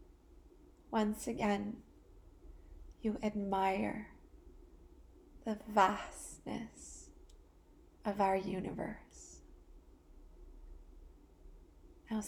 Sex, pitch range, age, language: female, 200-225 Hz, 20-39, English